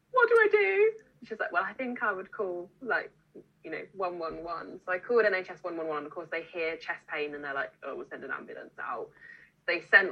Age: 10-29